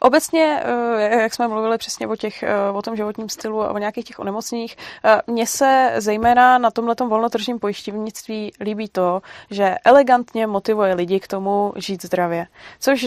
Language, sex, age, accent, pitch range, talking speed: Czech, female, 20-39, native, 205-245 Hz, 155 wpm